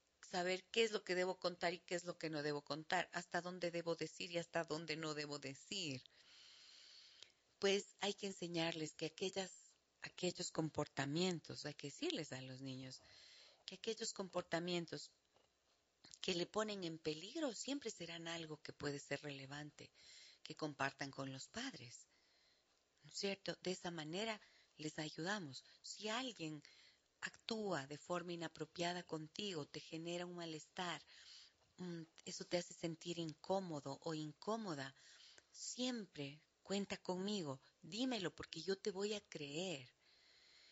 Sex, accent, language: female, Mexican, Spanish